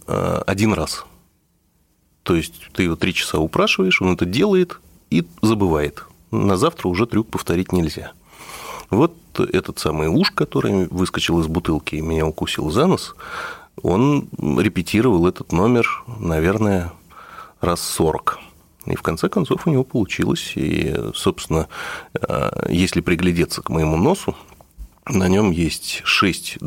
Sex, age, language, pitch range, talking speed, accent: male, 30-49, Russian, 80-95 Hz, 130 wpm, native